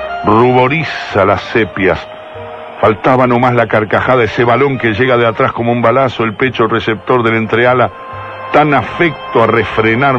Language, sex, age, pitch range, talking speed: Spanish, male, 60-79, 110-130 Hz, 145 wpm